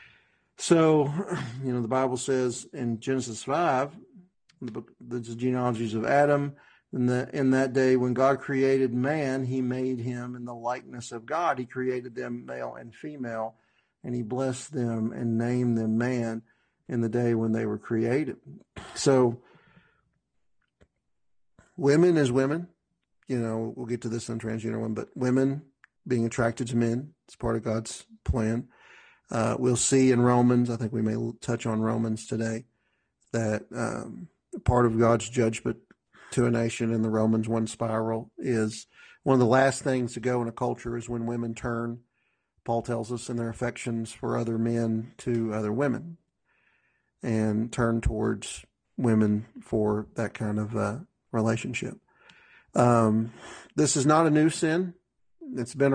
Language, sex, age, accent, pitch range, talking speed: English, male, 50-69, American, 115-130 Hz, 160 wpm